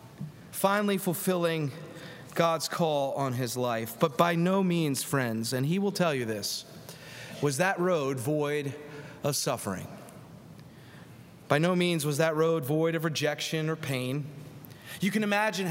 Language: English